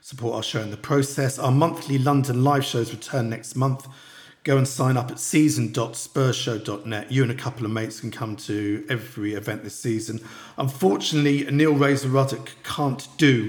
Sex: male